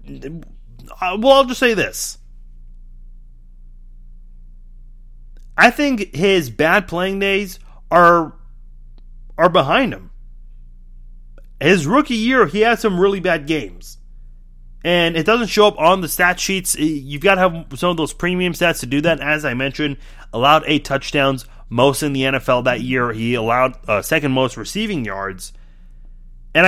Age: 30-49